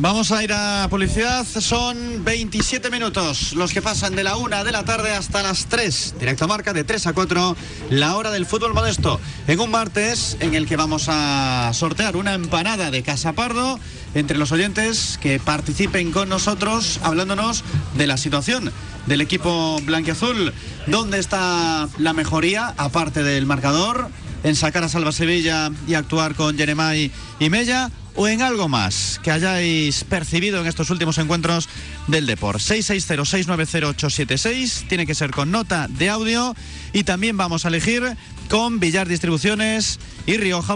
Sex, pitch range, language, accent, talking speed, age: male, 150-200 Hz, Spanish, Spanish, 160 wpm, 40-59